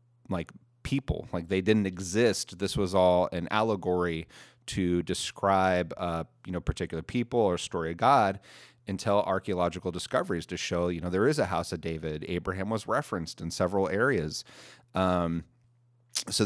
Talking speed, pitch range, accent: 155 wpm, 90-110 Hz, American